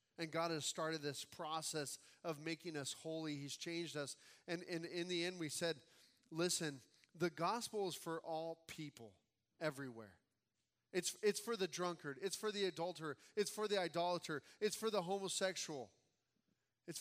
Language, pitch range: English, 150-200 Hz